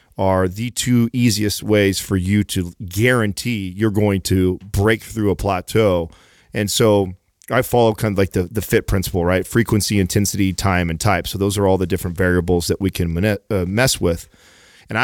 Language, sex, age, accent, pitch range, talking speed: English, male, 40-59, American, 95-110 Hz, 190 wpm